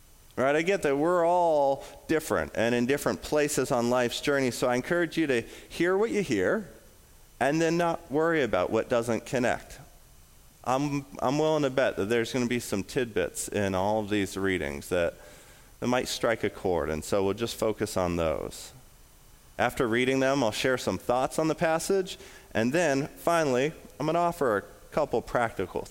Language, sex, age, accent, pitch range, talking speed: English, male, 30-49, American, 95-145 Hz, 185 wpm